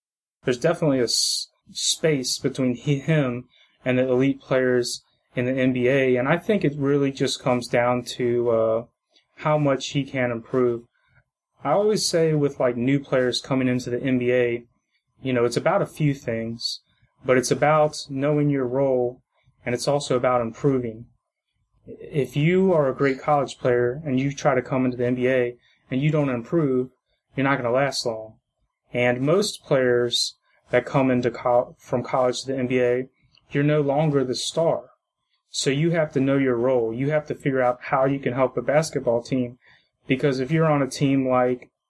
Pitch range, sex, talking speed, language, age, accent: 125-140 Hz, male, 180 wpm, English, 30-49, American